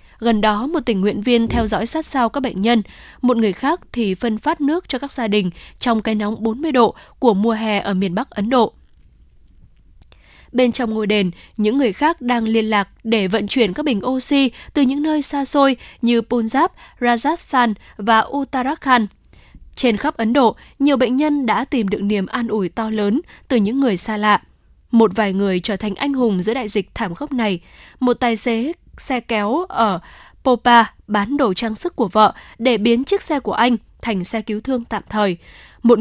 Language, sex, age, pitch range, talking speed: Vietnamese, female, 10-29, 215-265 Hz, 205 wpm